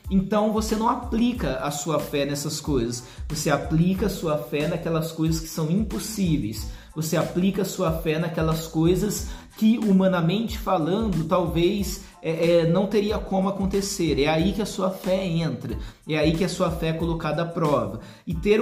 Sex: male